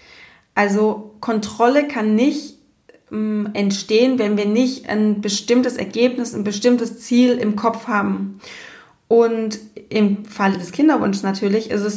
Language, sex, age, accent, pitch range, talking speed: German, female, 20-39, German, 215-250 Hz, 130 wpm